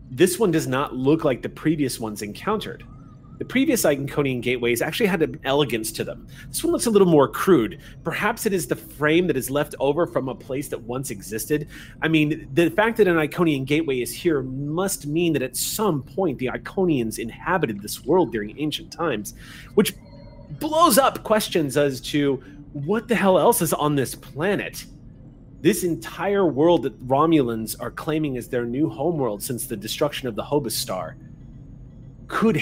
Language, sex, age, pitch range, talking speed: English, male, 30-49, 125-160 Hz, 180 wpm